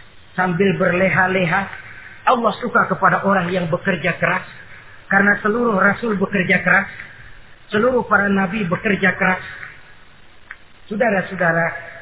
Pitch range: 145-235 Hz